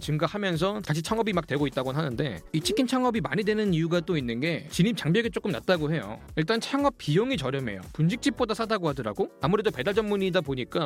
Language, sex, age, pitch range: Korean, male, 30-49, 165-230 Hz